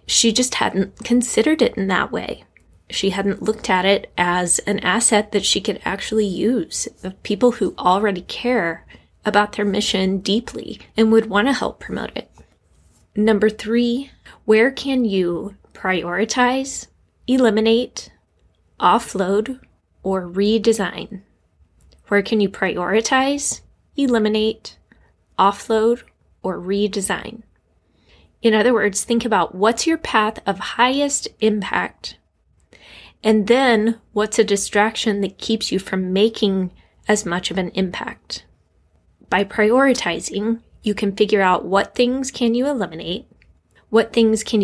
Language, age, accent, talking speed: English, 20-39, American, 130 wpm